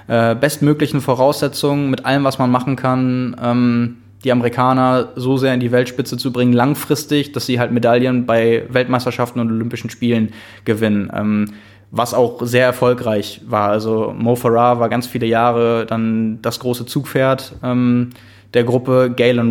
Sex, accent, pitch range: male, German, 115-130 Hz